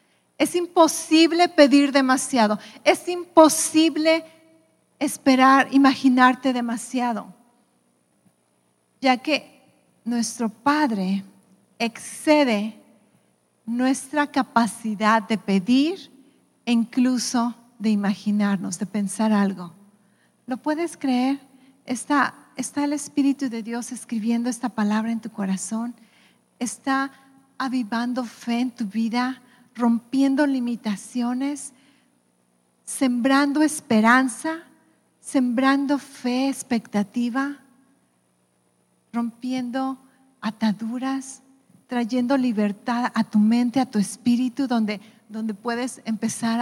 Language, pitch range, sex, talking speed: English, 215-265 Hz, female, 85 wpm